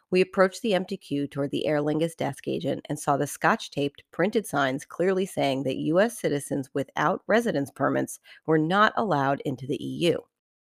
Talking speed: 175 wpm